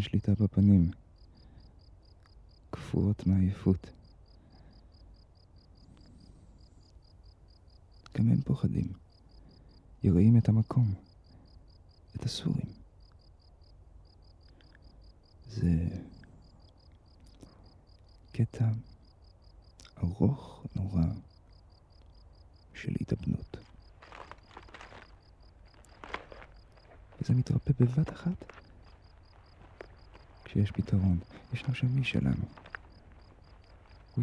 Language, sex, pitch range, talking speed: Hebrew, male, 85-105 Hz, 50 wpm